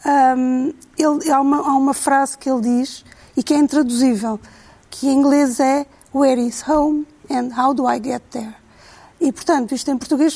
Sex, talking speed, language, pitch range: female, 170 wpm, Portuguese, 245-290 Hz